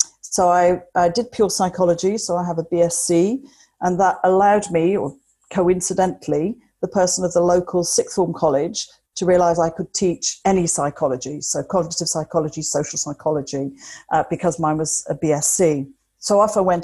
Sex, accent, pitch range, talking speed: female, British, 160-185 Hz, 170 wpm